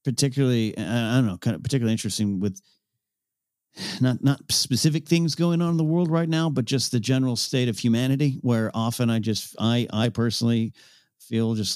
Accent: American